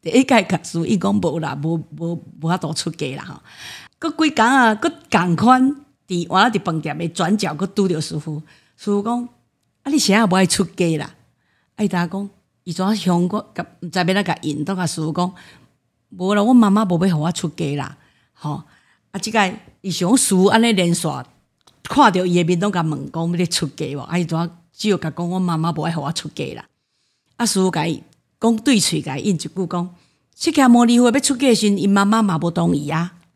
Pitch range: 160-205 Hz